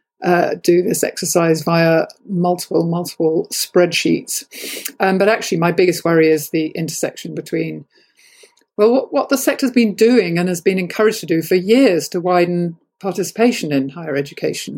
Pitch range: 165-195 Hz